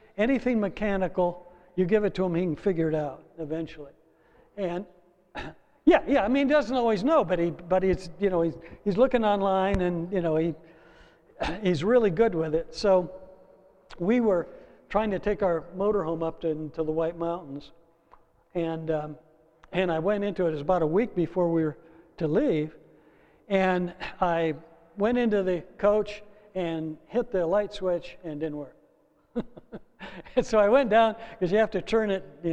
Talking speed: 185 wpm